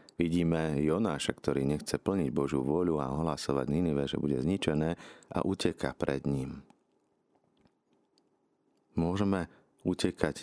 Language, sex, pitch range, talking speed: Slovak, male, 70-85 Hz, 110 wpm